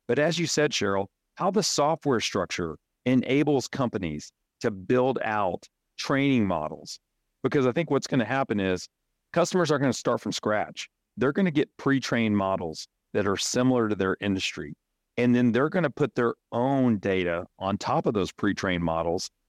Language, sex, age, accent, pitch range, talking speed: English, male, 40-59, American, 95-130 Hz, 180 wpm